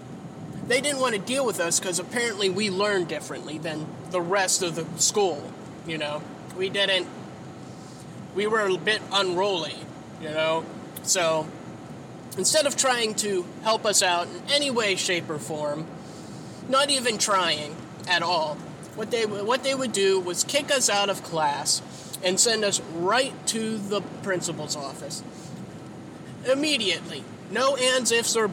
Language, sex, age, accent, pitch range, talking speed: English, male, 20-39, American, 180-230 Hz, 155 wpm